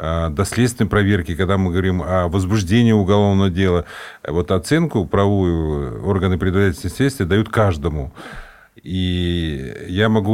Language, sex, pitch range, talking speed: Russian, male, 90-105 Hz, 115 wpm